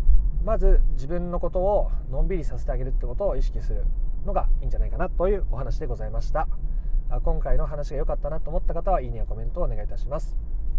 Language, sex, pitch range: Japanese, male, 120-165 Hz